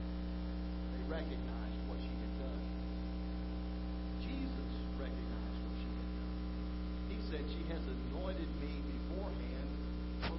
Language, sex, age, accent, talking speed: English, male, 50-69, American, 110 wpm